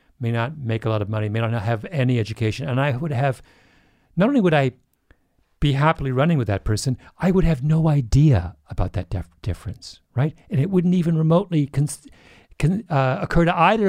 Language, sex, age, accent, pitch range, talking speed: English, male, 50-69, American, 100-155 Hz, 205 wpm